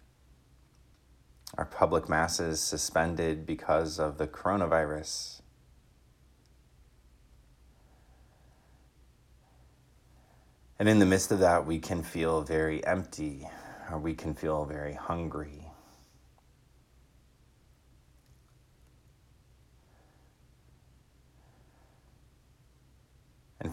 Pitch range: 65-80 Hz